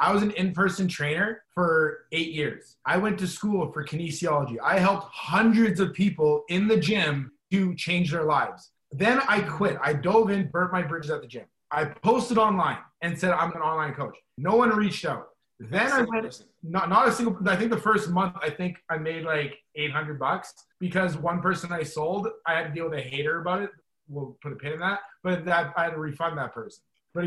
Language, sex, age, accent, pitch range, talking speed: English, male, 20-39, American, 155-195 Hz, 215 wpm